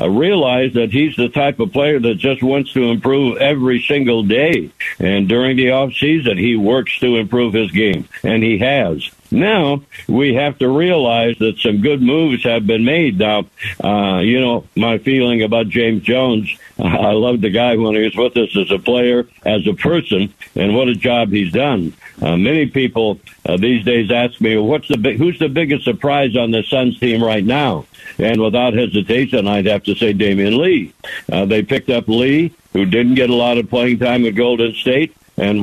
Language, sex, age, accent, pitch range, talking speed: English, male, 60-79, American, 110-135 Hz, 195 wpm